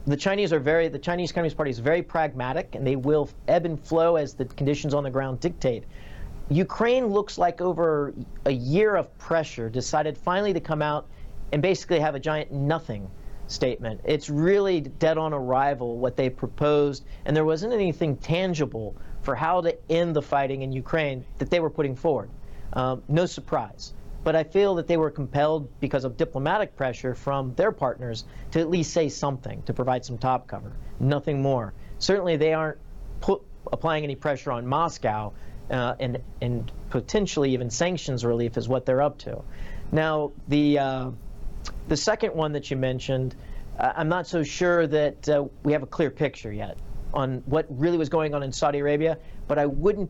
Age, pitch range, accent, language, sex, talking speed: 40-59, 130-160 Hz, American, English, male, 180 wpm